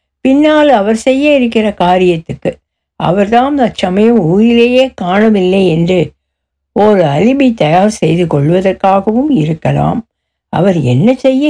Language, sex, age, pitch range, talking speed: Tamil, female, 60-79, 160-225 Hz, 100 wpm